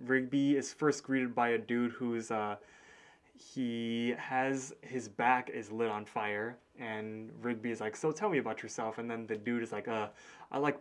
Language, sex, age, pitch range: English, male, 20-39, 110-130 Hz